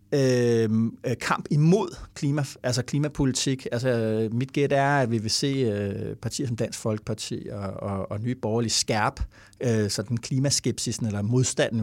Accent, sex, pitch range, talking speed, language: Danish, male, 115-145 Hz, 110 wpm, English